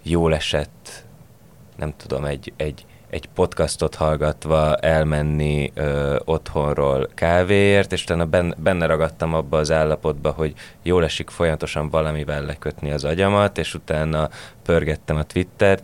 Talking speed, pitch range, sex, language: 125 wpm, 75-85 Hz, male, Hungarian